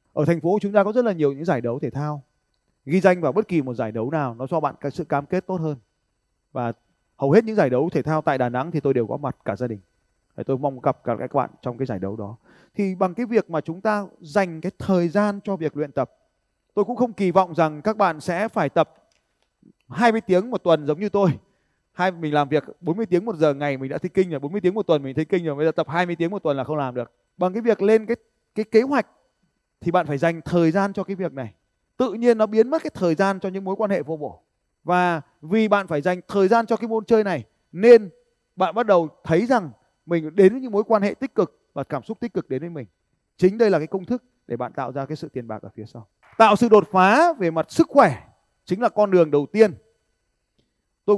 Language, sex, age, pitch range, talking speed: Vietnamese, male, 20-39, 145-205 Hz, 265 wpm